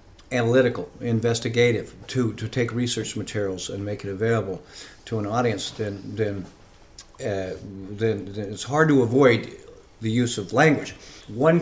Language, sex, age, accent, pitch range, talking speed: English, male, 50-69, American, 100-130 Hz, 135 wpm